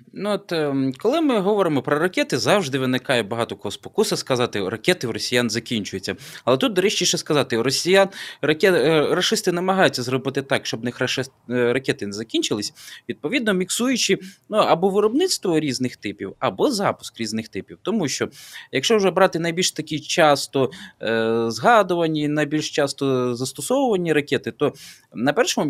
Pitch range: 130-185 Hz